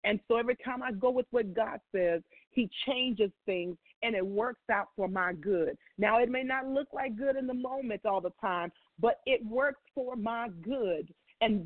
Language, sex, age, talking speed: English, female, 40-59, 205 wpm